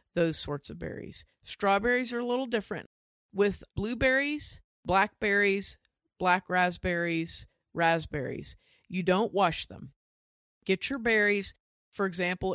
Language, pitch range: English, 160-200 Hz